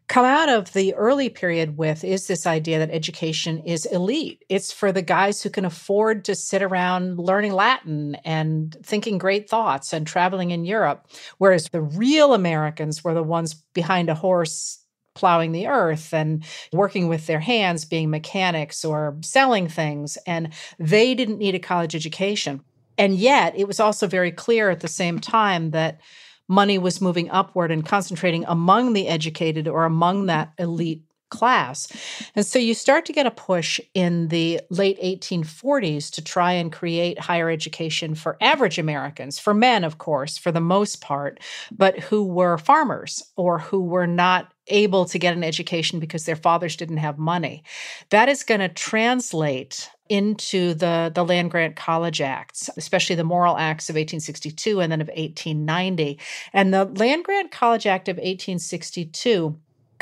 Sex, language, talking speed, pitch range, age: female, English, 165 wpm, 160-200 Hz, 40-59